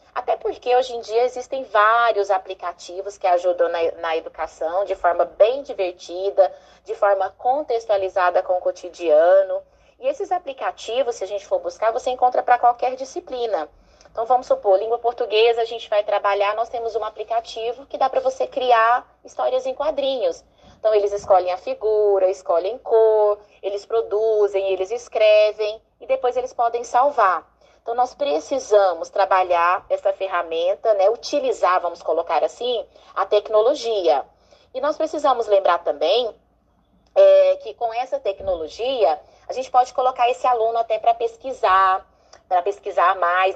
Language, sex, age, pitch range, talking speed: Portuguese, female, 20-39, 190-255 Hz, 150 wpm